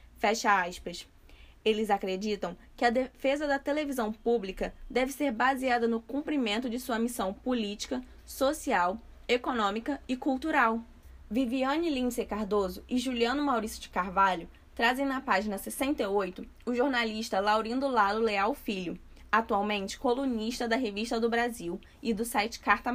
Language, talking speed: Portuguese, 135 wpm